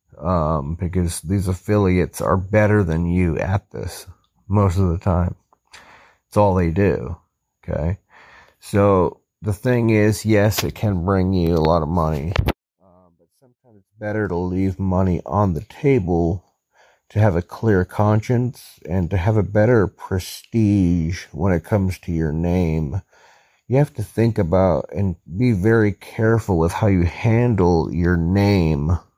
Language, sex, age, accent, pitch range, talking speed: English, male, 40-59, American, 85-105 Hz, 155 wpm